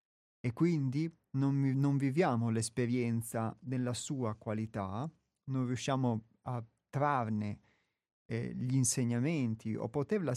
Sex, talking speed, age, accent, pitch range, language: male, 105 wpm, 30-49, native, 115-150 Hz, Italian